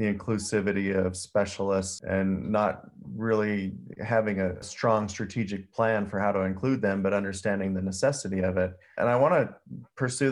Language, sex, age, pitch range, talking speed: English, male, 30-49, 100-115 Hz, 165 wpm